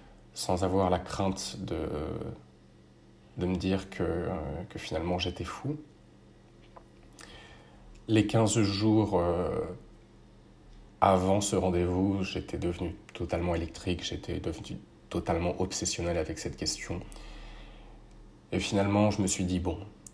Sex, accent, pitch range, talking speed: male, French, 90-100 Hz, 110 wpm